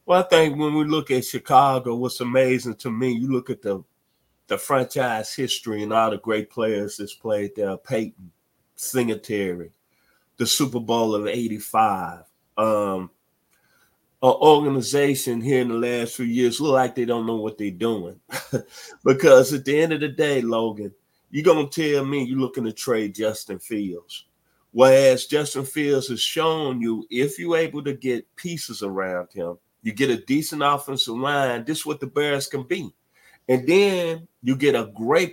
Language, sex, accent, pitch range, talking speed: English, male, American, 115-150 Hz, 175 wpm